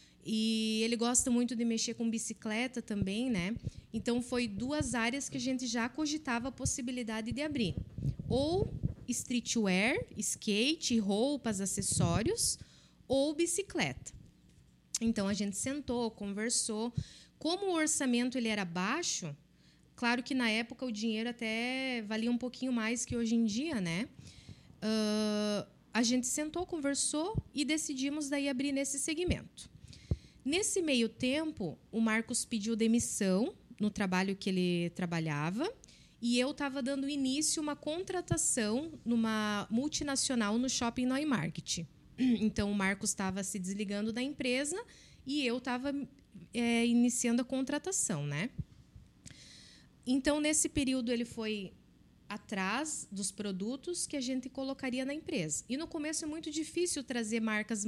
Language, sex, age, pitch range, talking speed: Portuguese, female, 20-39, 215-275 Hz, 135 wpm